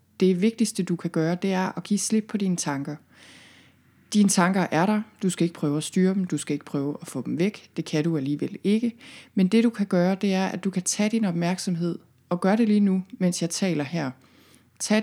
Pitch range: 140-190 Hz